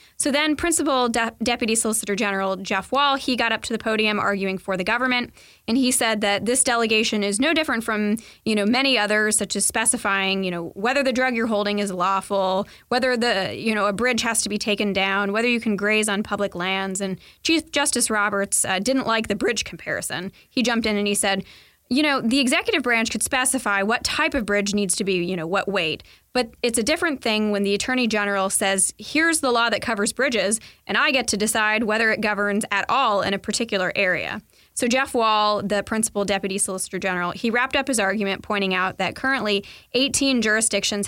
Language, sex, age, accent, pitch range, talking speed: English, female, 20-39, American, 200-245 Hz, 210 wpm